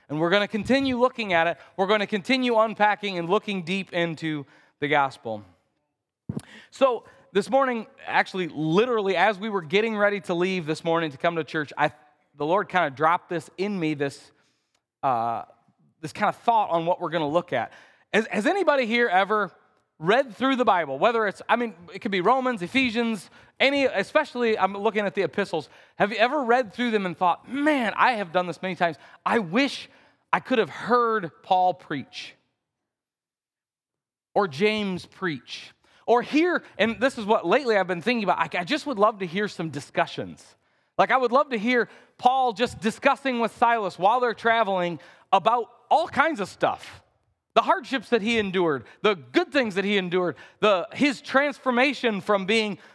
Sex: male